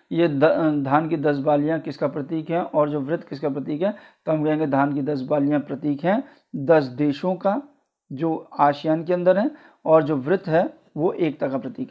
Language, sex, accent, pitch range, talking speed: Hindi, male, native, 150-210 Hz, 195 wpm